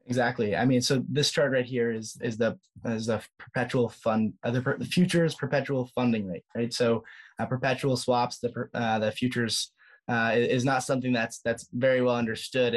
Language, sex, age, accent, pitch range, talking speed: English, male, 20-39, American, 110-125 Hz, 180 wpm